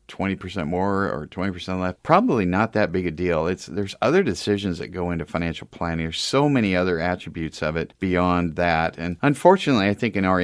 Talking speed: 200 wpm